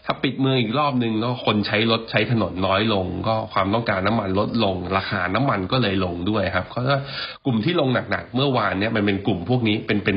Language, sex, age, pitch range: Thai, male, 20-39, 100-125 Hz